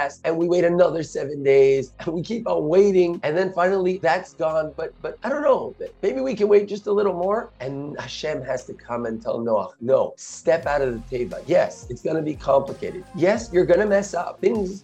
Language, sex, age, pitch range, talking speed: English, male, 30-49, 140-195 Hz, 220 wpm